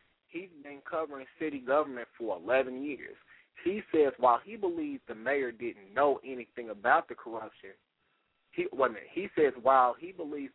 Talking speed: 160 wpm